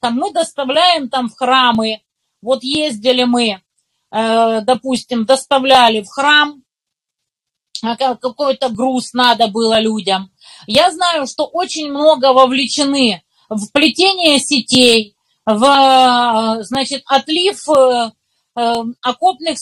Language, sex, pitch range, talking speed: Russian, female, 235-320 Hz, 90 wpm